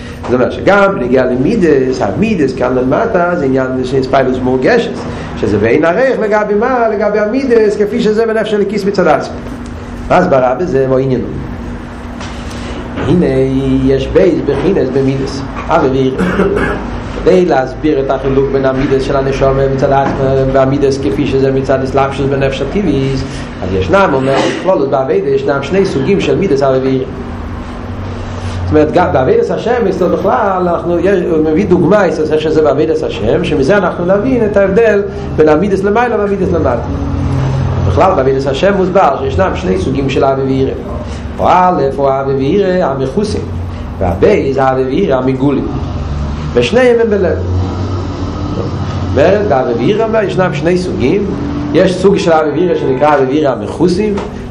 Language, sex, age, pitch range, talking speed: Hebrew, male, 40-59, 125-185 Hz, 75 wpm